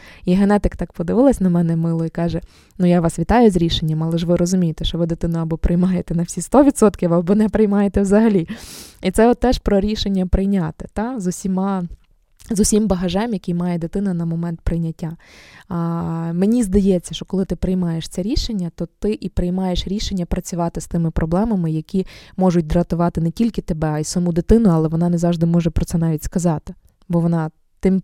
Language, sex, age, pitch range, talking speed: Ukrainian, female, 20-39, 170-195 Hz, 195 wpm